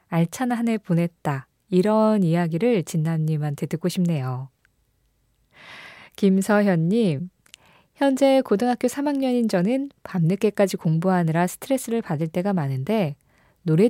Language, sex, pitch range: Korean, female, 165-220 Hz